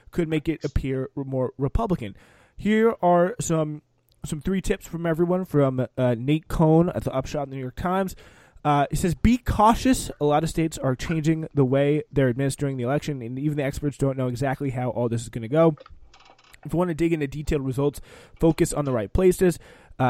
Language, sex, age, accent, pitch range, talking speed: English, male, 20-39, American, 130-170 Hz, 210 wpm